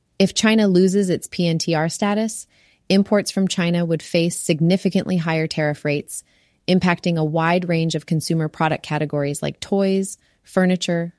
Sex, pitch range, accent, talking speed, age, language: female, 155-185 Hz, American, 140 wpm, 30-49, English